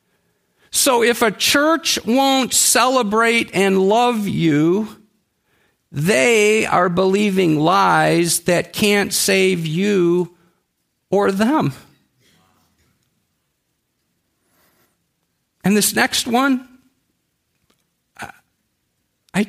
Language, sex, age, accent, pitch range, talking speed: English, male, 50-69, American, 165-230 Hz, 75 wpm